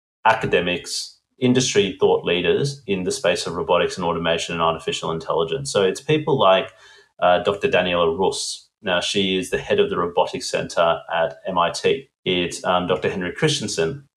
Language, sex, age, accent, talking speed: English, male, 30-49, Australian, 160 wpm